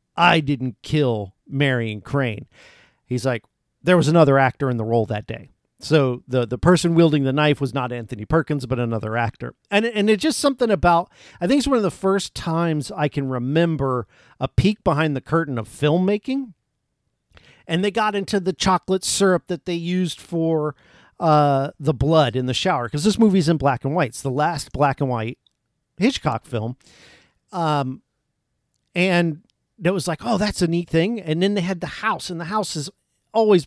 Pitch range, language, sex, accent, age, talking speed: 130-180 Hz, English, male, American, 50-69, 190 wpm